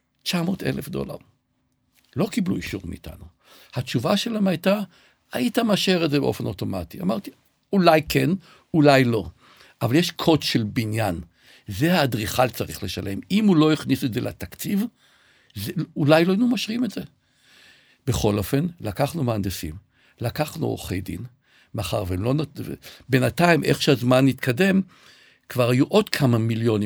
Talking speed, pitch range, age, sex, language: 135 wpm, 110-155 Hz, 60-79, male, Hebrew